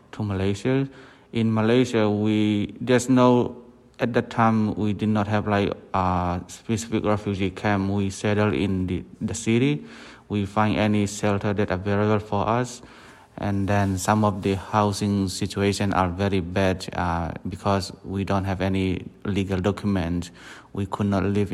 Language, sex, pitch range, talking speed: English, male, 95-110 Hz, 155 wpm